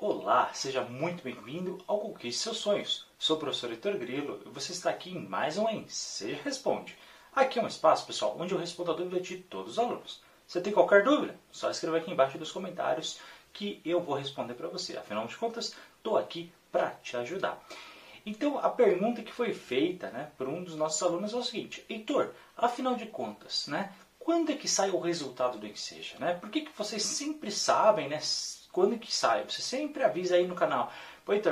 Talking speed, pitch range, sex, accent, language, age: 200 wpm, 170-245 Hz, male, Brazilian, Portuguese, 30-49